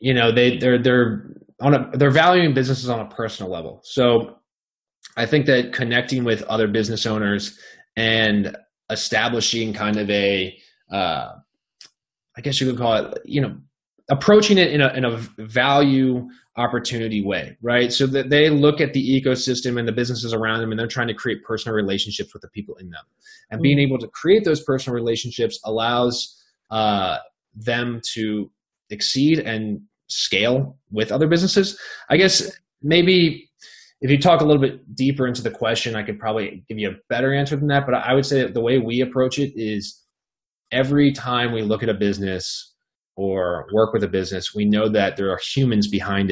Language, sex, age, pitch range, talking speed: English, male, 20-39, 110-135 Hz, 185 wpm